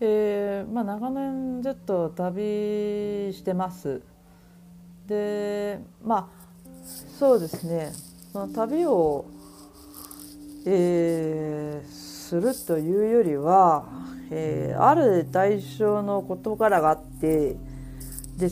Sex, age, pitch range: female, 40-59, 145-210 Hz